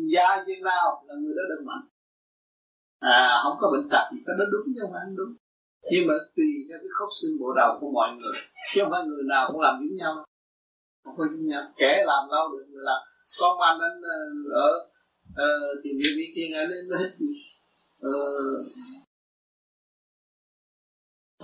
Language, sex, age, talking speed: Vietnamese, male, 20-39, 190 wpm